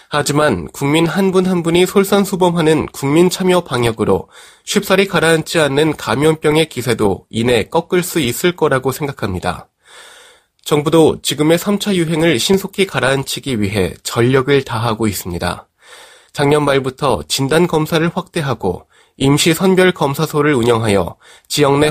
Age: 20-39